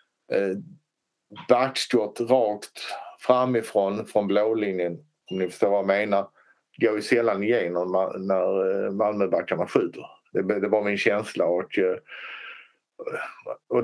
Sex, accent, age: male, Norwegian, 50-69